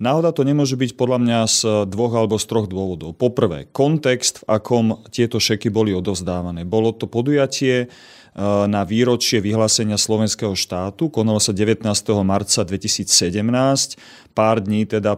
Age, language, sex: 30-49, Slovak, male